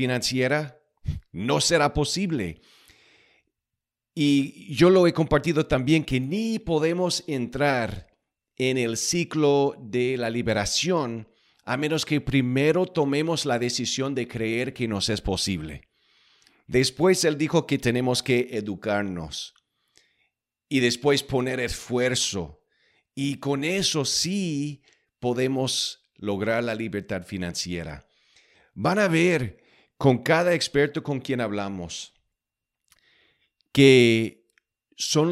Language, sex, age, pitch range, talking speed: English, male, 40-59, 115-150 Hz, 110 wpm